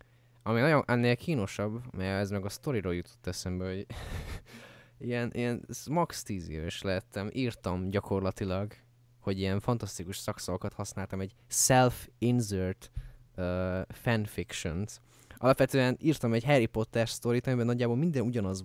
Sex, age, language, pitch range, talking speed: male, 20-39, Hungarian, 100-125 Hz, 120 wpm